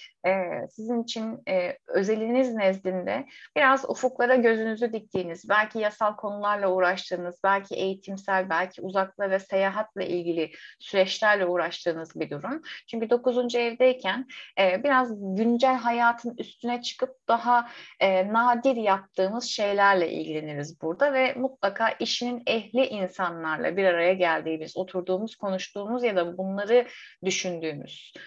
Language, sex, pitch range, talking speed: Turkish, female, 185-245 Hz, 115 wpm